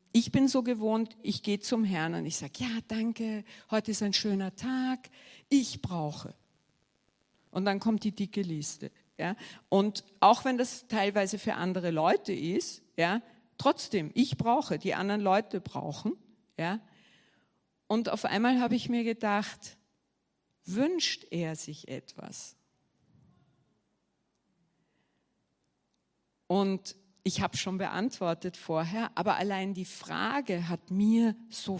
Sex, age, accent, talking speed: female, 50-69, German, 130 wpm